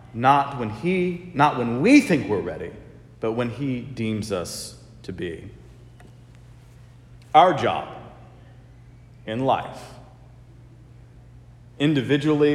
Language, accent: English, American